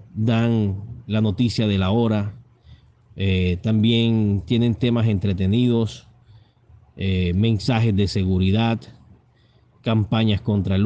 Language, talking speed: Spanish, 100 wpm